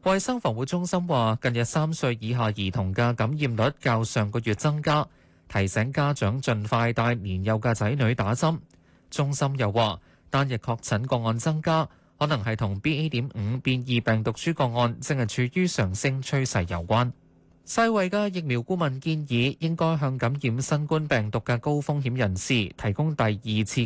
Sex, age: male, 20-39